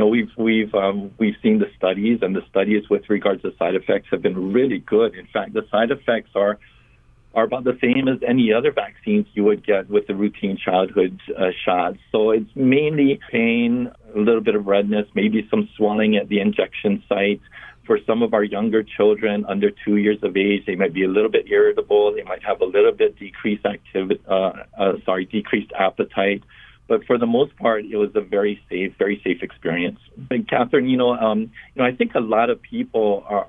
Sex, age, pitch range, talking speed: male, 50-69, 100-125 Hz, 210 wpm